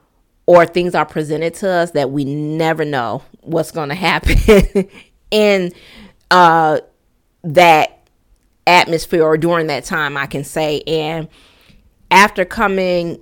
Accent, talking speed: American, 125 wpm